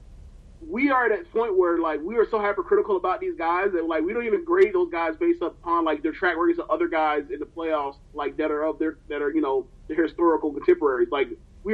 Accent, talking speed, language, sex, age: American, 245 wpm, English, male, 30-49